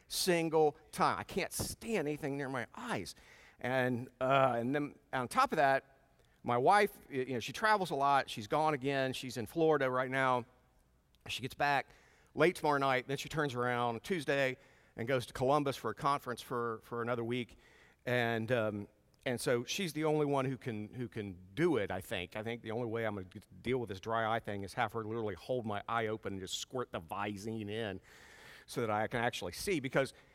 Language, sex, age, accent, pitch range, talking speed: English, male, 50-69, American, 115-155 Hz, 210 wpm